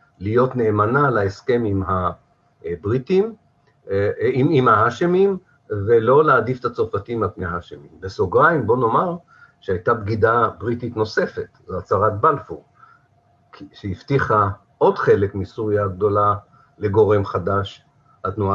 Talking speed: 105 wpm